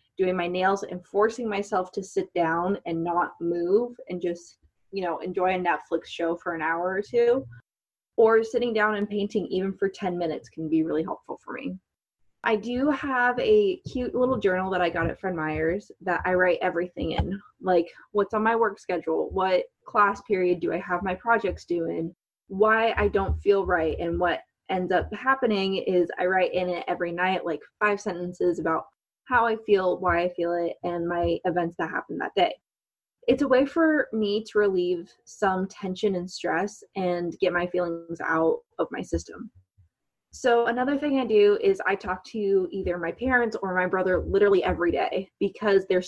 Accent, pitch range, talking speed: American, 175-220 Hz, 190 wpm